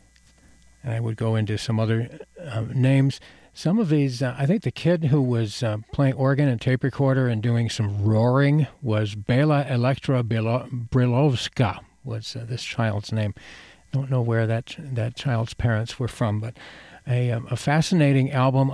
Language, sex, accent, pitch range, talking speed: English, male, American, 115-135 Hz, 175 wpm